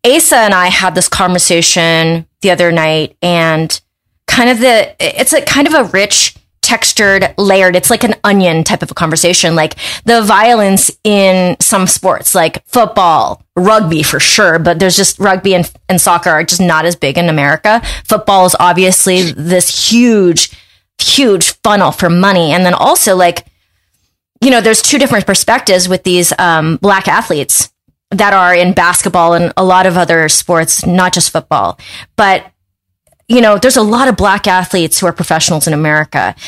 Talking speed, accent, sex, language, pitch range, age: 175 wpm, American, female, English, 170-200 Hz, 20-39